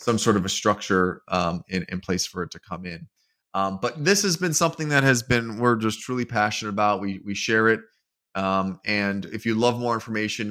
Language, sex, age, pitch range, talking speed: English, male, 30-49, 105-125 Hz, 225 wpm